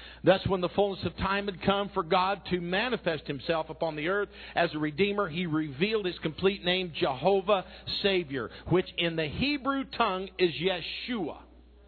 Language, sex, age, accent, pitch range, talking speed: English, male, 50-69, American, 155-205 Hz, 165 wpm